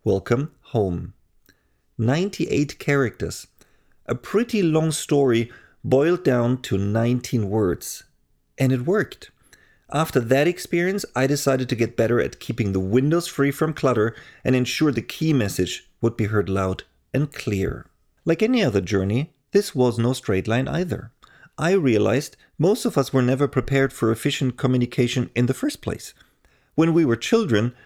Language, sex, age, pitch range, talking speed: English, male, 40-59, 110-150 Hz, 155 wpm